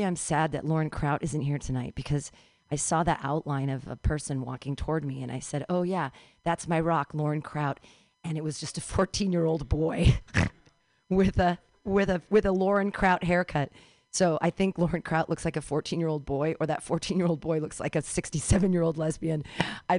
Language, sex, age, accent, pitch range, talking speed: English, female, 40-59, American, 150-190 Hz, 220 wpm